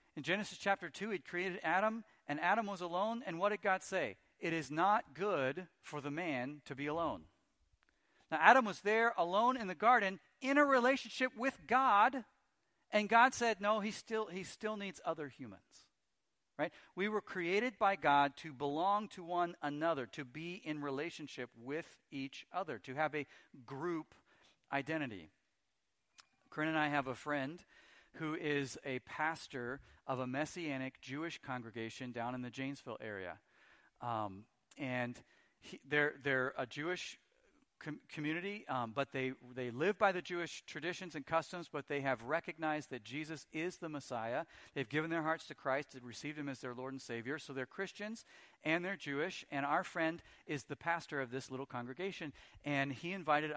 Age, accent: 50-69, American